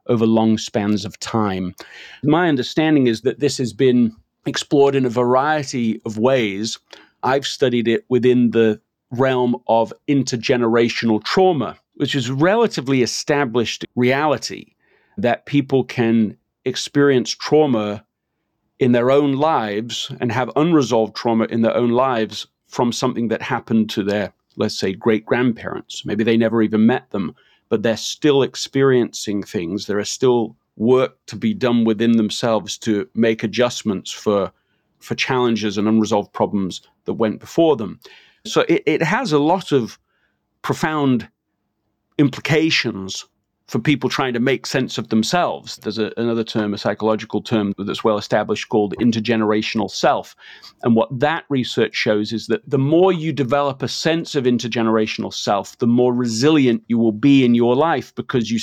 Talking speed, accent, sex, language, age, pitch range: 150 wpm, British, male, English, 40-59, 110-135 Hz